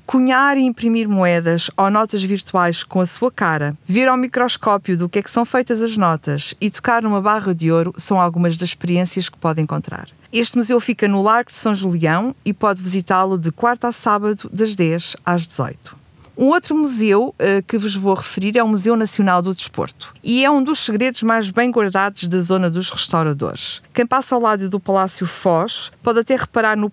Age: 50-69